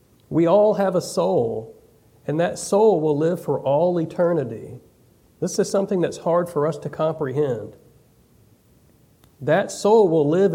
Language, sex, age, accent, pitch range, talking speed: English, male, 40-59, American, 135-190 Hz, 150 wpm